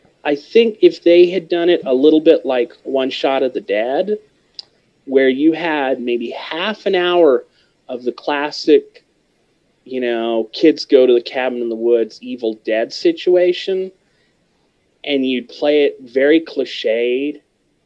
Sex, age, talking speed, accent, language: male, 30-49, 150 wpm, American, English